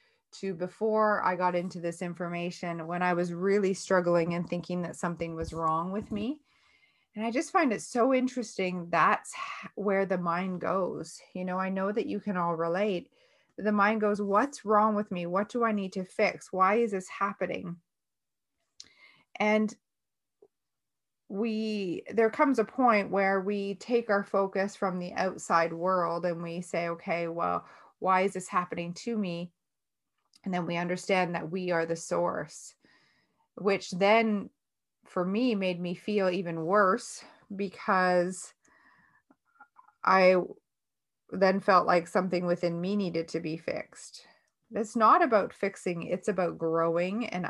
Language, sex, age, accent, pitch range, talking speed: English, female, 30-49, American, 175-210 Hz, 155 wpm